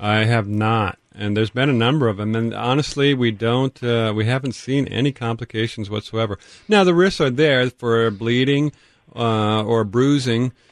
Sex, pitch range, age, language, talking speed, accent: male, 105-135 Hz, 40-59, English, 175 wpm, American